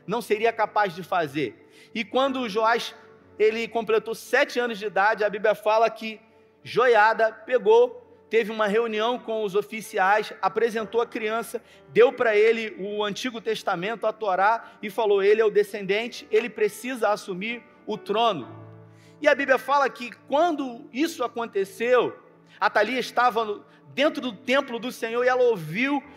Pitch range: 195-235 Hz